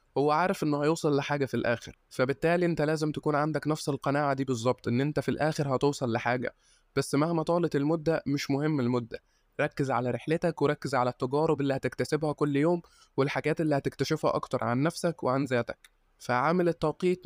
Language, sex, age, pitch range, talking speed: Arabic, male, 20-39, 135-155 Hz, 170 wpm